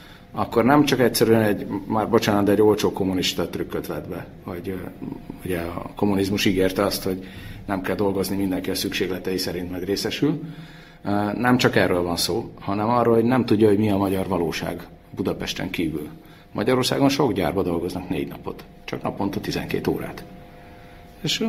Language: Hungarian